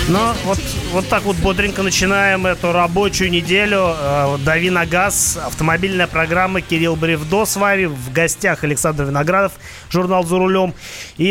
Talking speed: 145 wpm